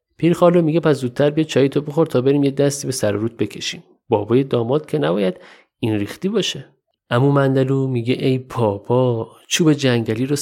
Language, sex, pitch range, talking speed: Persian, male, 110-150 Hz, 180 wpm